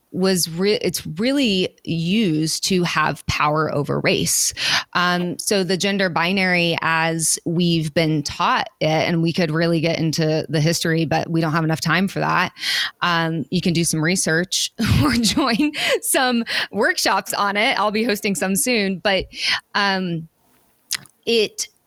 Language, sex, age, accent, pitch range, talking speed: English, female, 20-39, American, 165-195 Hz, 155 wpm